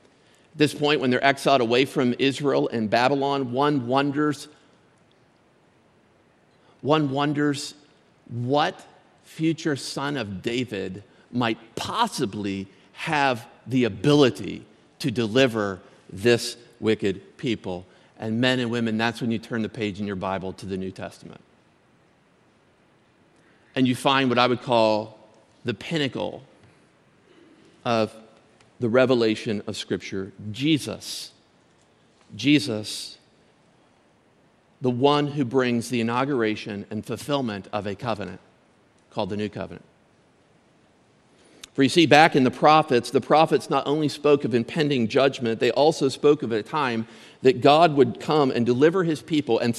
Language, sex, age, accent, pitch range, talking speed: English, male, 50-69, American, 110-145 Hz, 130 wpm